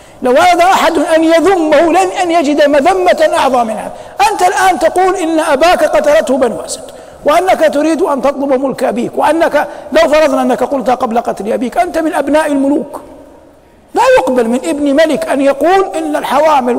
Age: 60-79